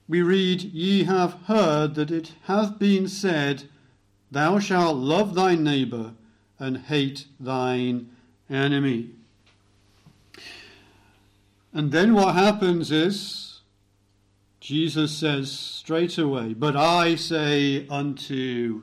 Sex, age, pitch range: male, 50-69, 105-155 Hz